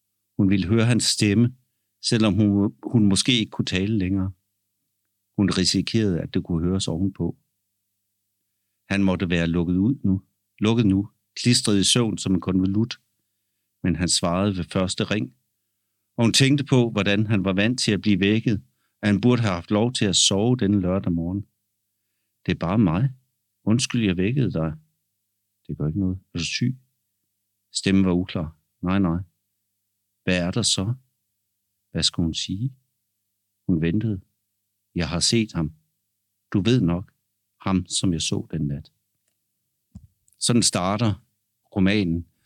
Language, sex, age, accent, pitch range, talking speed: Danish, male, 60-79, native, 90-110 Hz, 155 wpm